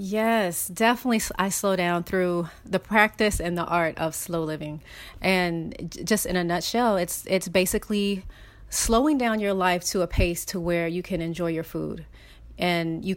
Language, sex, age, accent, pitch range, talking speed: English, female, 30-49, American, 170-200 Hz, 175 wpm